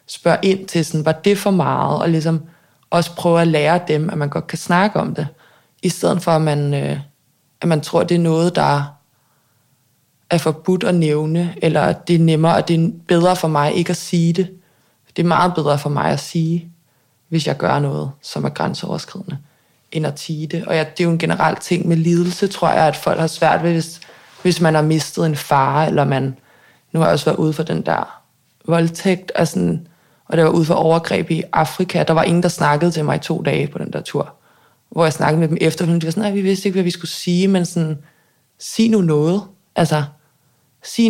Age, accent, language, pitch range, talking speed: 20-39, native, Danish, 155-180 Hz, 220 wpm